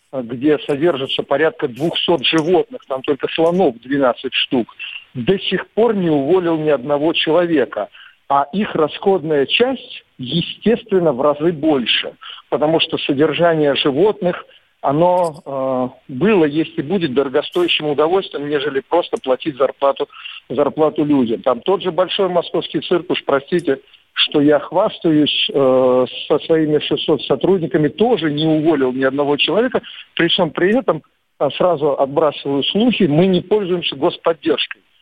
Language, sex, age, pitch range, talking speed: Russian, male, 50-69, 145-185 Hz, 130 wpm